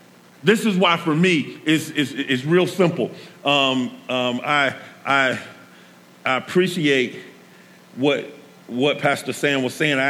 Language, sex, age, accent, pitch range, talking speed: English, male, 40-59, American, 115-160 Hz, 135 wpm